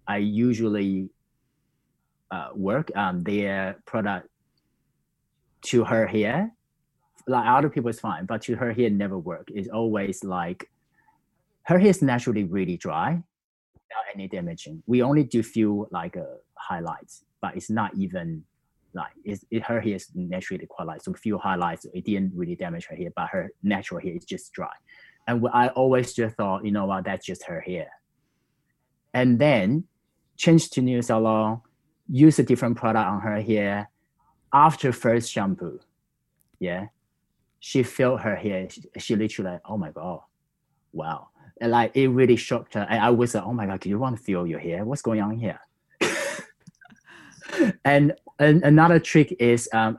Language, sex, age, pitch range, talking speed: English, male, 30-49, 105-140 Hz, 165 wpm